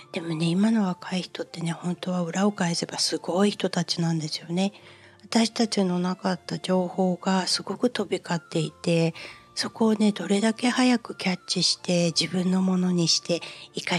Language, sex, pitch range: Japanese, female, 175-210 Hz